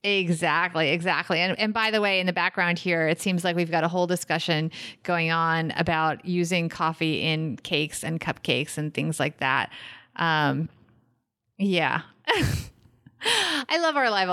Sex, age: female, 30-49